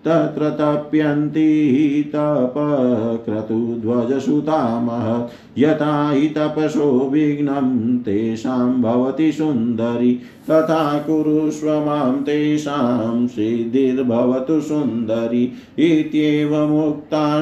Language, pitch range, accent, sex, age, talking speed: Hindi, 120-150 Hz, native, male, 50-69, 45 wpm